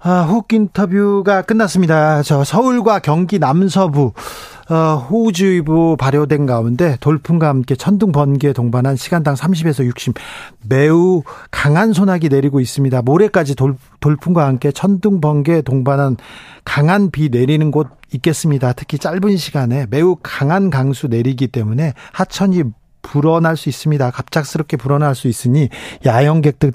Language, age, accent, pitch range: Korean, 40-59, native, 135-175 Hz